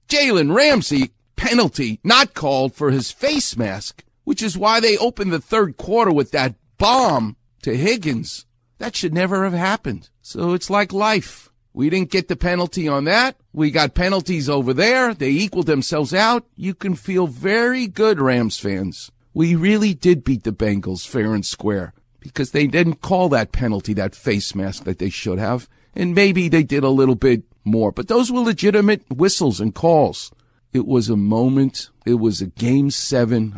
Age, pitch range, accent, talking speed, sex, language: 50-69, 105-165 Hz, American, 180 wpm, male, English